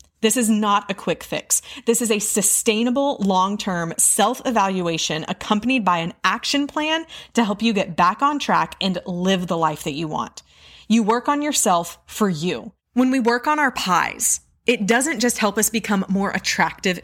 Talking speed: 180 wpm